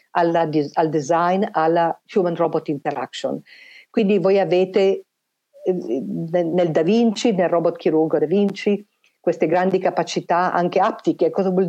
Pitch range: 160-195 Hz